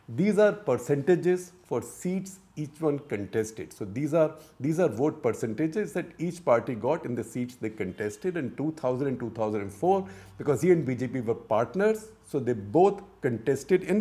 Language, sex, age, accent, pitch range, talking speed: English, male, 50-69, Indian, 125-180 Hz, 165 wpm